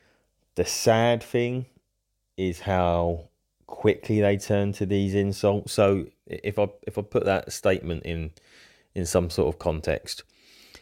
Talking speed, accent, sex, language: 140 wpm, British, male, English